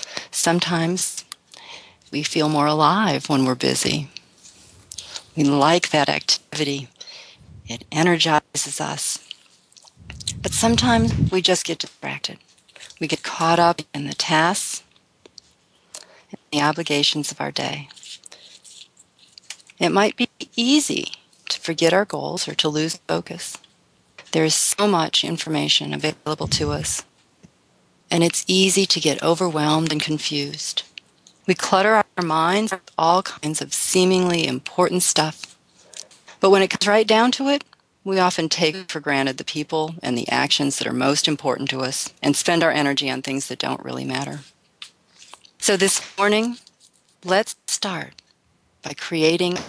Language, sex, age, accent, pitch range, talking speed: English, female, 40-59, American, 145-185 Hz, 140 wpm